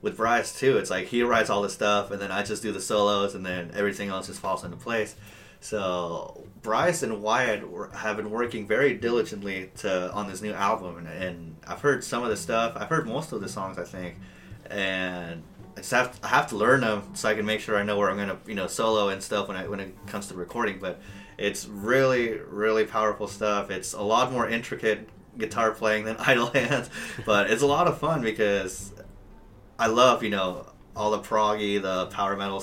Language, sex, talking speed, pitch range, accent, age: English, male, 220 wpm, 95-110 Hz, American, 30-49